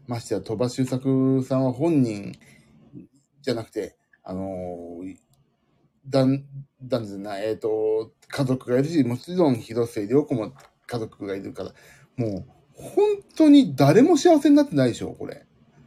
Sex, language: male, Japanese